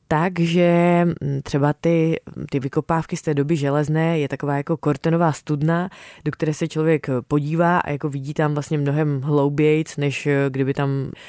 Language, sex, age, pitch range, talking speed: Czech, female, 20-39, 145-170 Hz, 155 wpm